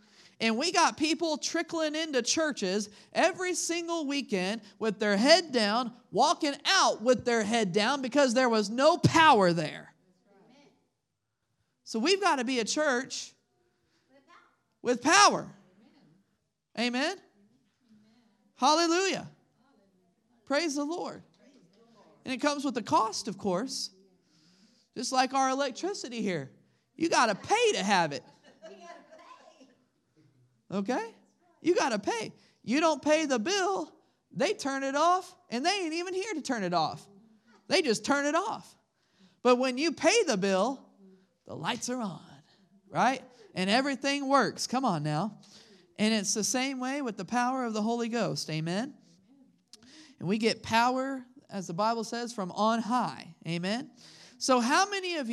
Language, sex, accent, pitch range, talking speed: English, male, American, 210-295 Hz, 145 wpm